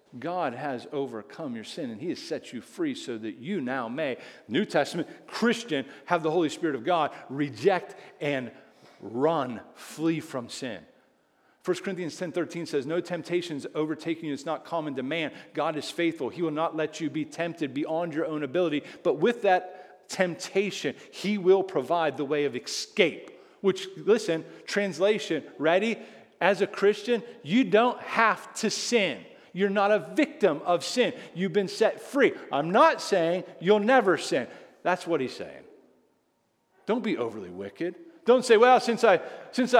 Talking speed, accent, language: 170 wpm, American, English